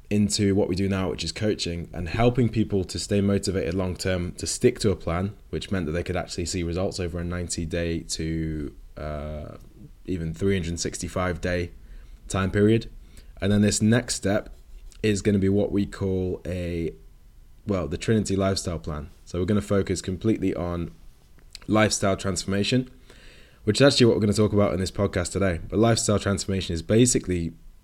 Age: 20-39